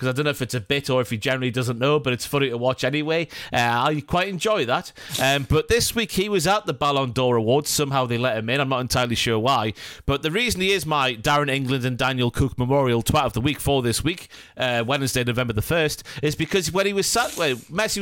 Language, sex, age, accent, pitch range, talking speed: English, male, 30-49, British, 130-190 Hz, 260 wpm